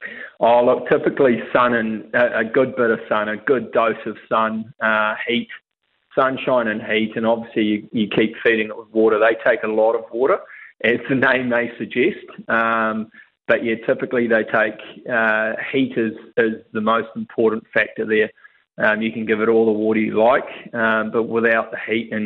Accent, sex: Australian, male